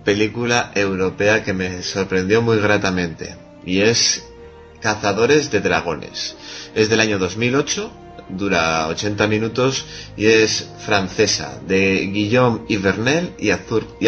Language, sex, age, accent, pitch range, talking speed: Spanish, male, 30-49, Spanish, 95-110 Hz, 110 wpm